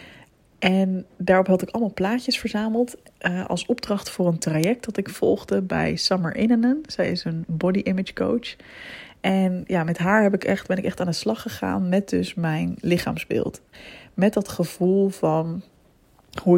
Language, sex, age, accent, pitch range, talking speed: Dutch, female, 20-39, Dutch, 170-210 Hz, 175 wpm